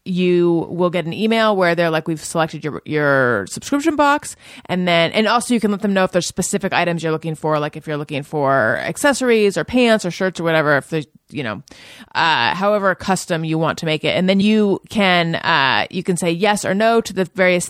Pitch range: 170-215 Hz